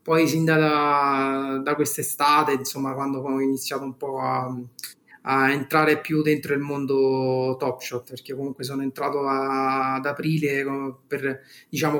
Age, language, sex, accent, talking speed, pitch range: 30-49, Italian, male, native, 145 wpm, 135-155 Hz